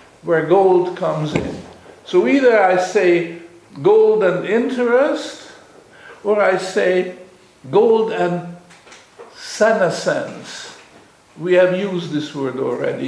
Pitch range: 150-195 Hz